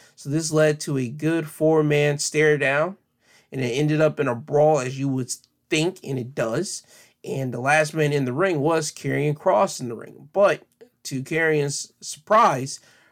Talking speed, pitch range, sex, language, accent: 180 wpm, 130-155 Hz, male, English, American